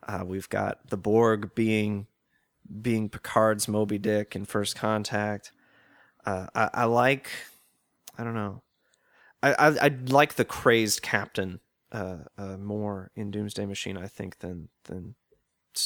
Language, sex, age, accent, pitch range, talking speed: English, male, 30-49, American, 100-115 Hz, 145 wpm